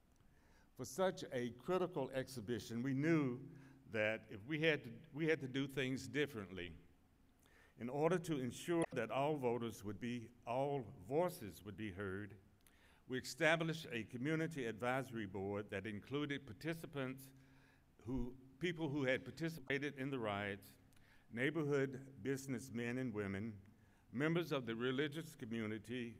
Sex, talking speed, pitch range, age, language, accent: male, 135 wpm, 110-140 Hz, 60-79, English, American